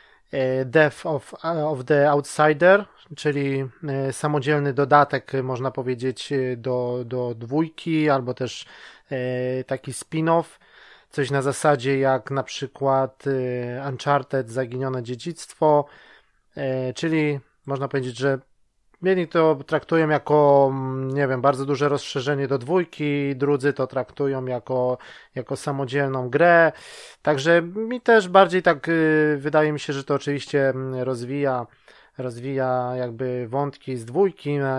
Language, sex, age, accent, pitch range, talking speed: Polish, male, 20-39, native, 130-150 Hz, 110 wpm